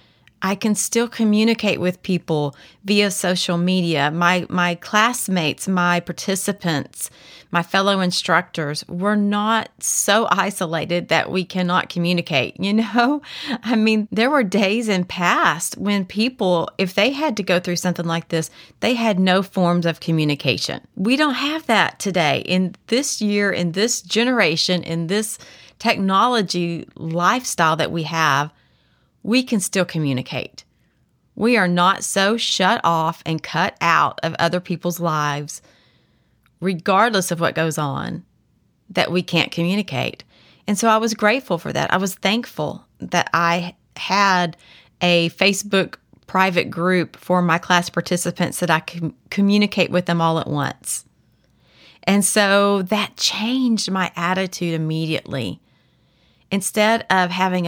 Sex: female